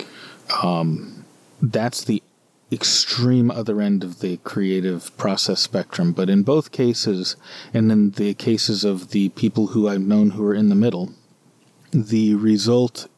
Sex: male